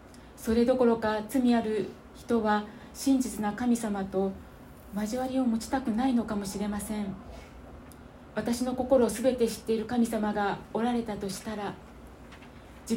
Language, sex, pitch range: Japanese, female, 210-245 Hz